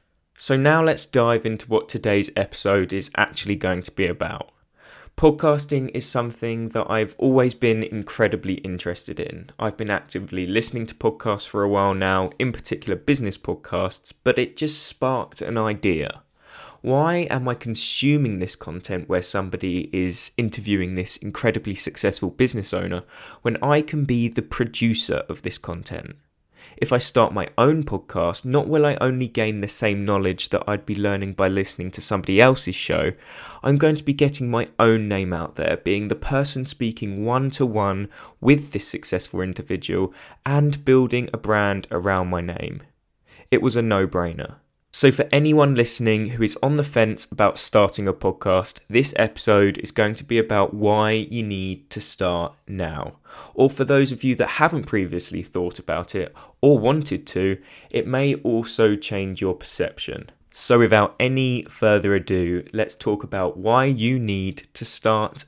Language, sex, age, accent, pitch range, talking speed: English, male, 20-39, British, 95-130 Hz, 165 wpm